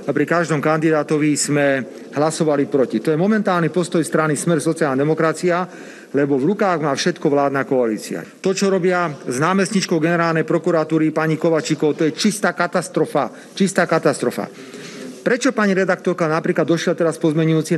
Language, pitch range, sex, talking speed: Slovak, 150-180 Hz, male, 150 wpm